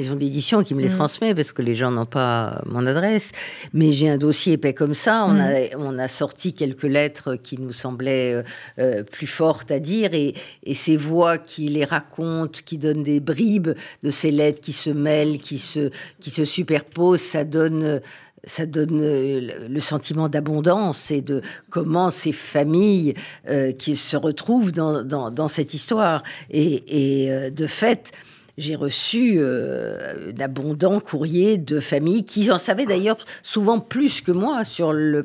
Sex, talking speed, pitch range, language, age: female, 170 wpm, 145-180 Hz, French, 50-69